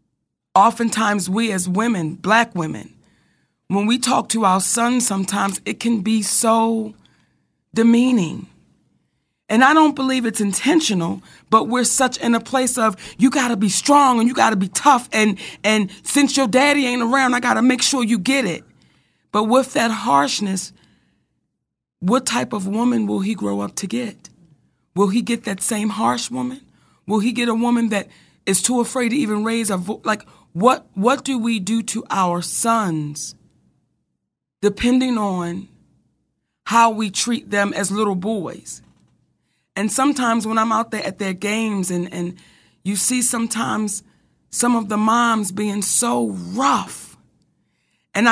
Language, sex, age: English, female, 40-59